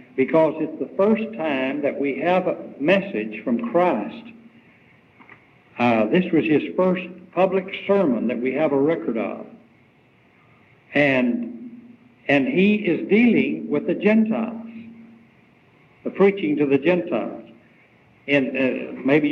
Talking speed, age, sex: 125 wpm, 60-79, male